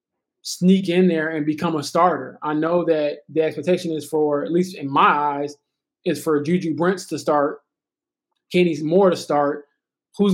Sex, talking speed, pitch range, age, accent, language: male, 175 wpm, 145-170 Hz, 20-39, American, English